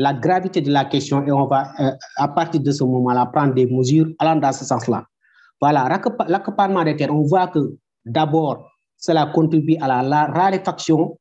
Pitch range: 145-180 Hz